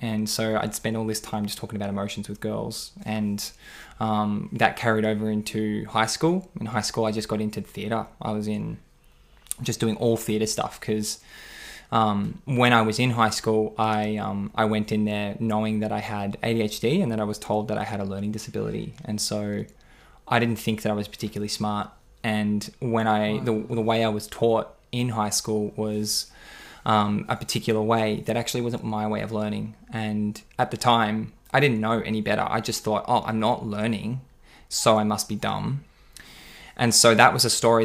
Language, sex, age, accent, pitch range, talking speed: English, male, 20-39, Australian, 105-115 Hz, 205 wpm